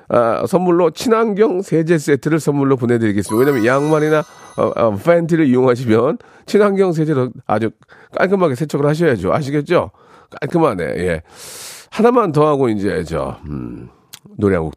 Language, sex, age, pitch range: Korean, male, 40-59, 110-175 Hz